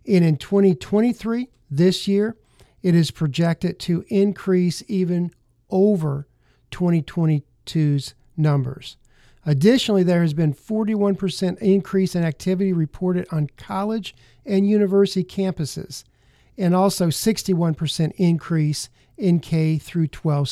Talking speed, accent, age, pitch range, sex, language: 105 wpm, American, 50-69, 145-190 Hz, male, English